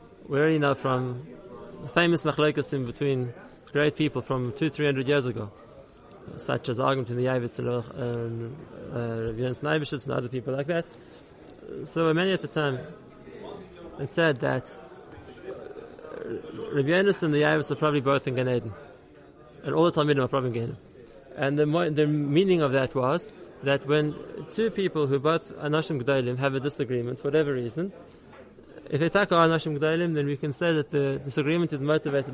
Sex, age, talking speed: male, 20-39, 165 wpm